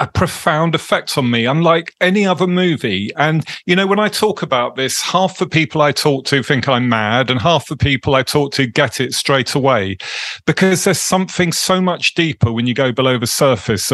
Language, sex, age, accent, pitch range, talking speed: English, male, 40-59, British, 125-165 Hz, 210 wpm